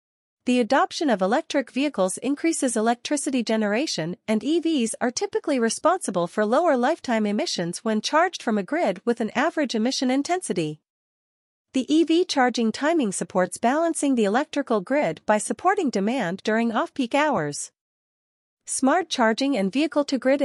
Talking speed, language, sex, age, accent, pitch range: 135 wpm, English, female, 40-59, American, 210-295 Hz